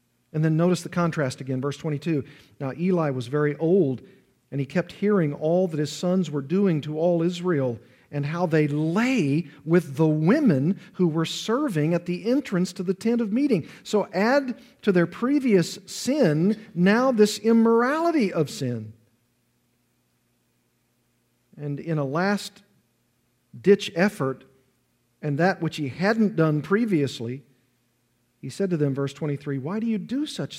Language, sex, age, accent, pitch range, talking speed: English, male, 50-69, American, 140-195 Hz, 155 wpm